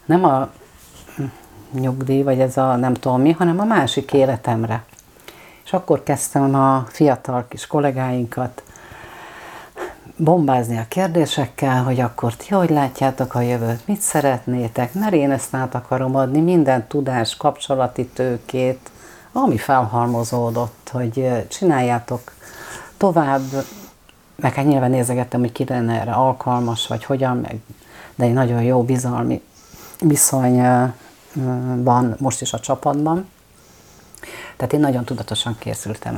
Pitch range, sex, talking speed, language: 120-140 Hz, female, 120 wpm, Hungarian